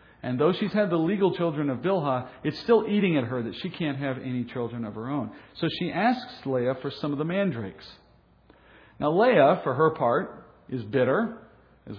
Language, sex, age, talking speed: English, male, 50-69, 200 wpm